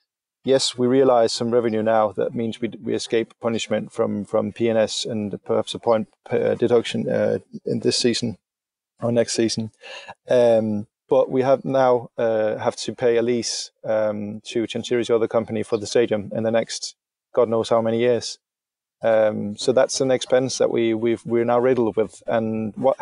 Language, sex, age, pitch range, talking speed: English, male, 30-49, 110-130 Hz, 180 wpm